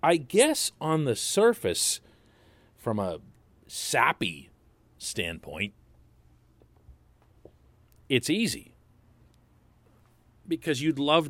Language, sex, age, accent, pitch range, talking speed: English, male, 40-59, American, 110-140 Hz, 75 wpm